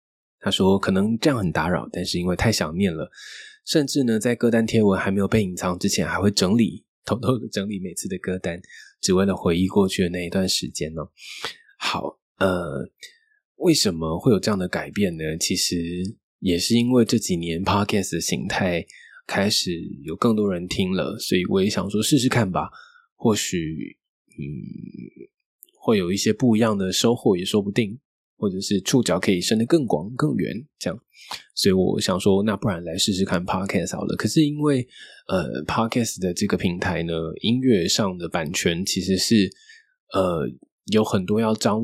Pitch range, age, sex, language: 95-125 Hz, 20-39, male, Chinese